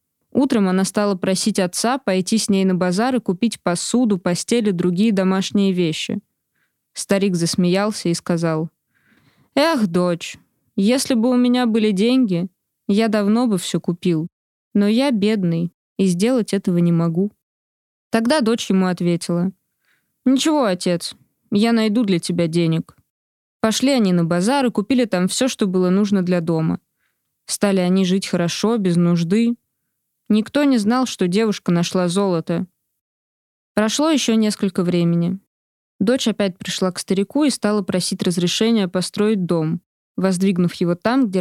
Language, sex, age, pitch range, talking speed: Russian, female, 20-39, 180-220 Hz, 145 wpm